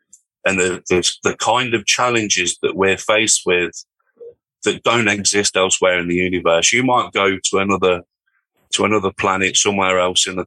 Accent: British